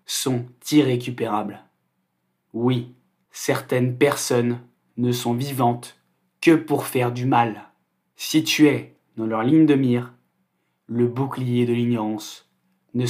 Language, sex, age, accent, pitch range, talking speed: French, male, 20-39, French, 120-135 Hz, 120 wpm